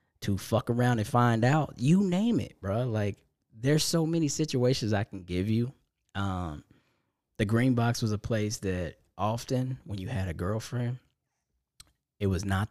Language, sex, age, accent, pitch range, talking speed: English, male, 10-29, American, 90-120 Hz, 170 wpm